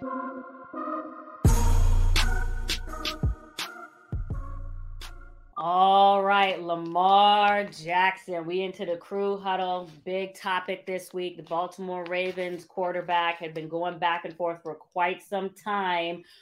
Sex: female